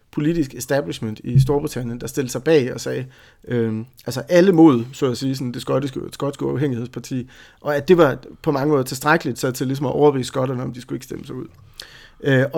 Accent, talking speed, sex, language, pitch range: native, 205 wpm, male, Danish, 125-155 Hz